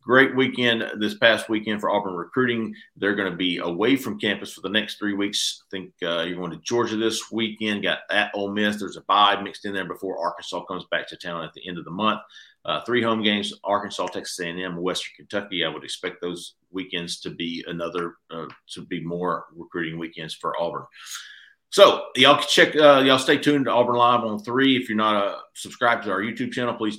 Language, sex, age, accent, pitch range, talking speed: English, male, 50-69, American, 90-120 Hz, 225 wpm